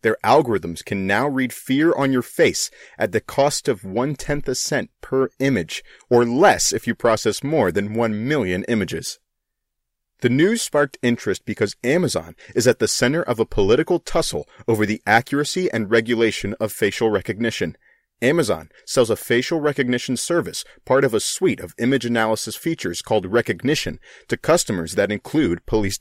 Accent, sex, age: American, male, 30-49